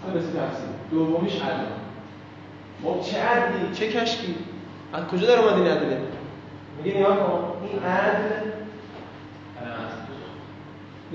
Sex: male